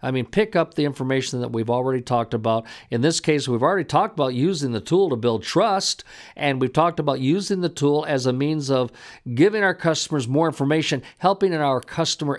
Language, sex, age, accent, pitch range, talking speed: English, male, 50-69, American, 125-180 Hz, 215 wpm